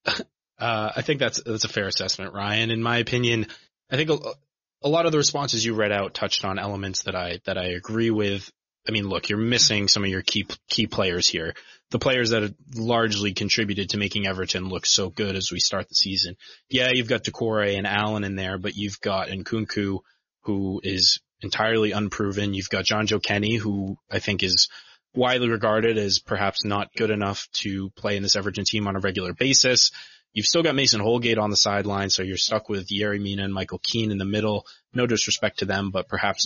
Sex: male